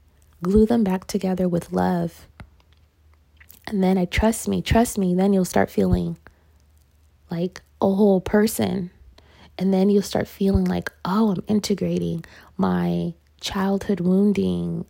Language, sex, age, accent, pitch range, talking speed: English, female, 20-39, American, 165-205 Hz, 135 wpm